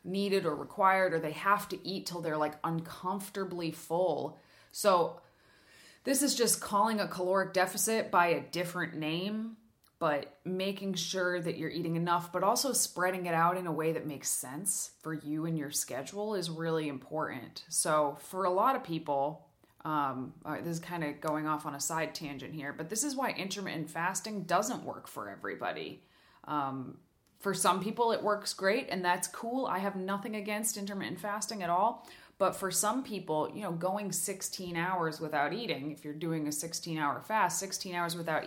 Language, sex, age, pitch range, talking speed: English, female, 20-39, 160-195 Hz, 185 wpm